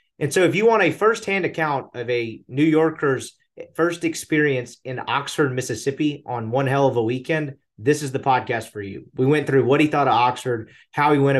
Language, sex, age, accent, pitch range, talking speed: English, male, 30-49, American, 120-150 Hz, 210 wpm